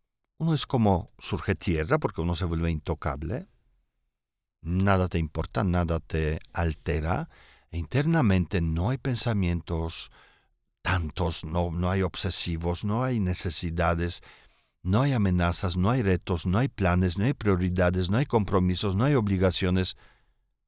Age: 50-69